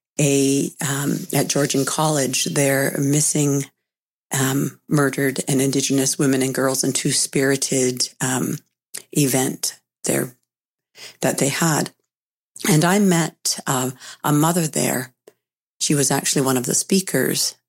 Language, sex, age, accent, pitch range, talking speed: English, female, 50-69, American, 130-155 Hz, 120 wpm